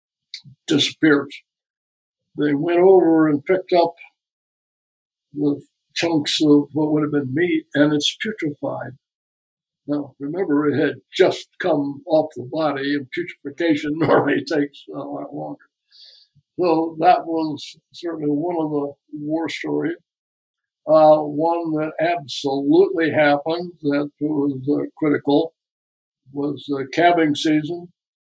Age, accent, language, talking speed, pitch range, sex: 60-79, American, English, 125 wpm, 145-165 Hz, male